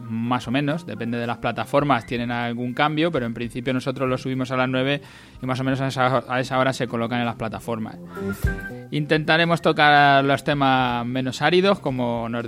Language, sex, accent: Spanish, male, Spanish